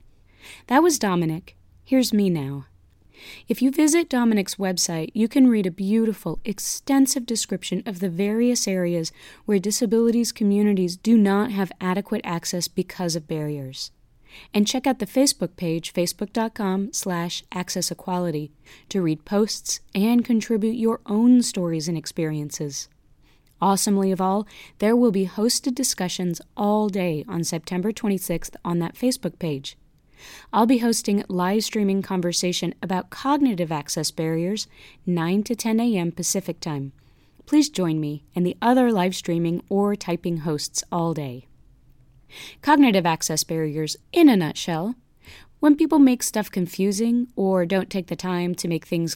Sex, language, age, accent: female, English, 30-49, American